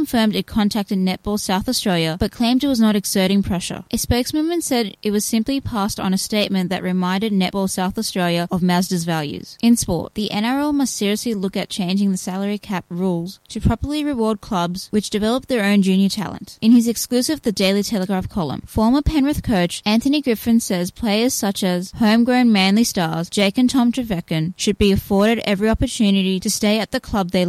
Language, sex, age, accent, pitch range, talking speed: English, female, 10-29, Australian, 190-230 Hz, 190 wpm